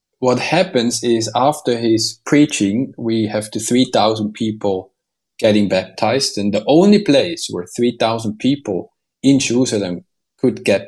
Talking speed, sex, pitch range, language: 125 wpm, male, 105-130 Hz, English